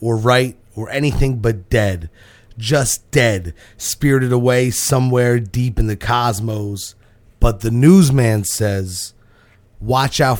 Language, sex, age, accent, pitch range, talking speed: English, male, 30-49, American, 115-150 Hz, 120 wpm